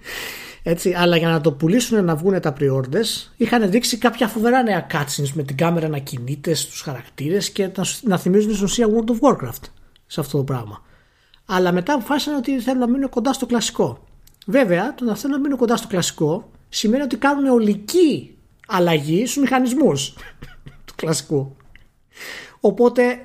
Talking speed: 165 wpm